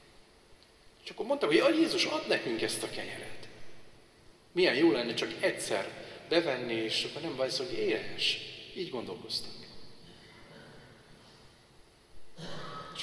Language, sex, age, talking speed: Hungarian, male, 40-59, 125 wpm